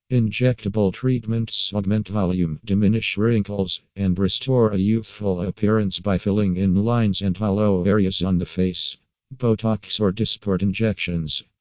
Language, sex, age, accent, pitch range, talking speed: English, male, 50-69, American, 95-110 Hz, 130 wpm